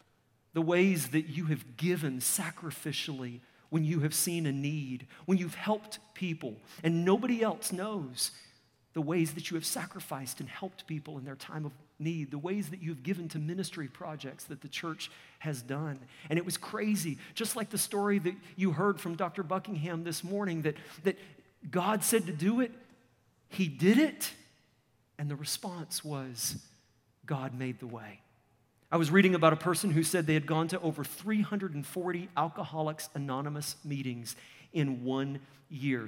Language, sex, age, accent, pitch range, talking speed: English, male, 40-59, American, 150-200 Hz, 170 wpm